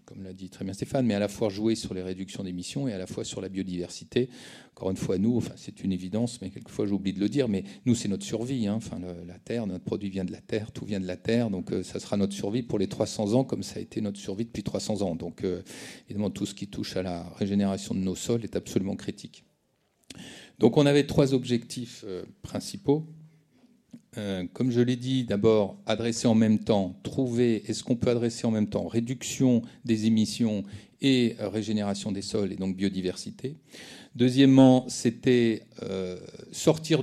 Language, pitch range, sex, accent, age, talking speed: French, 95-120 Hz, male, French, 40-59, 210 wpm